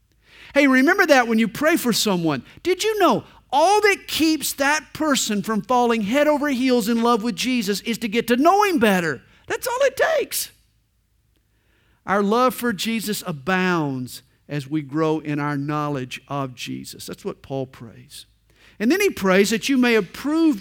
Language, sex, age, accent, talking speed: English, male, 50-69, American, 180 wpm